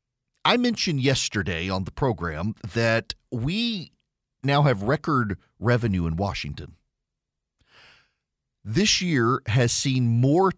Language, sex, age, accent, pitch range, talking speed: English, male, 40-59, American, 105-145 Hz, 110 wpm